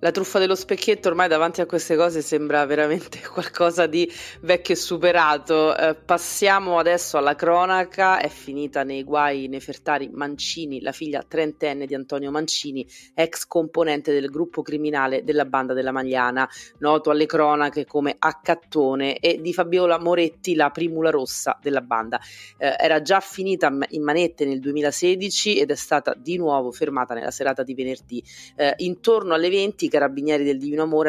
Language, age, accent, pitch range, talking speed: Italian, 20-39, native, 140-170 Hz, 160 wpm